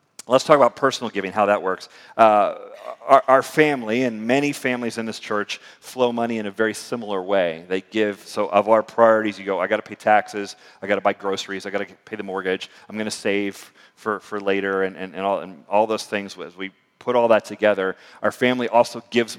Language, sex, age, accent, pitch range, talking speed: English, male, 40-59, American, 100-110 Hz, 230 wpm